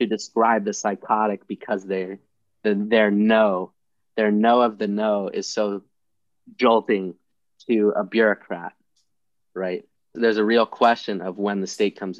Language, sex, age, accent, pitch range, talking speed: English, male, 20-39, American, 100-115 Hz, 145 wpm